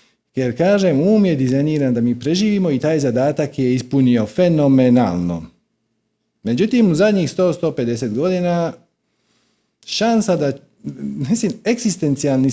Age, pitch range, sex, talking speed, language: 40-59, 115-180 Hz, male, 110 wpm, Croatian